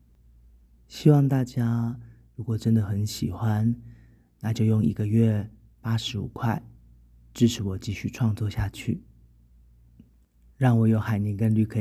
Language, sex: Chinese, male